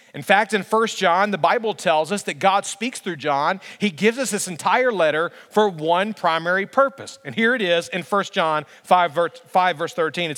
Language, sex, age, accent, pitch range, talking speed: English, male, 40-59, American, 180-235 Hz, 215 wpm